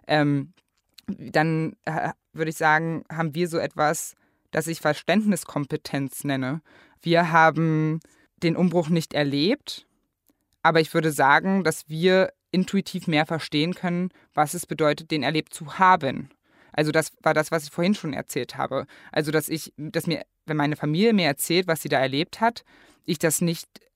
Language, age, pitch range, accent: German, 20-39, 150-175 Hz, German